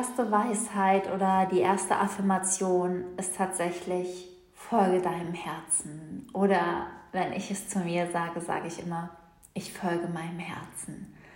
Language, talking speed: German, 135 wpm